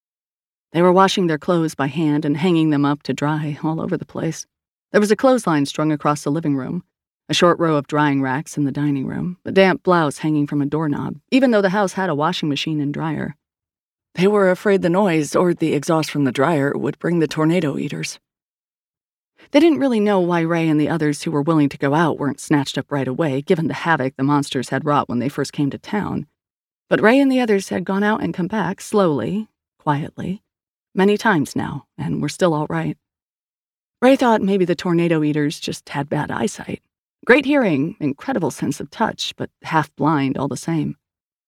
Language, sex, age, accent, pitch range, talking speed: English, female, 30-49, American, 145-185 Hz, 210 wpm